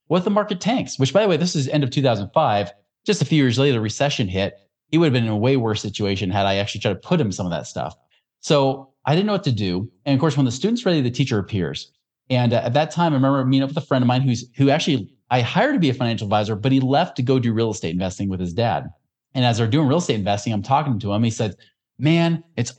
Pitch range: 115-155 Hz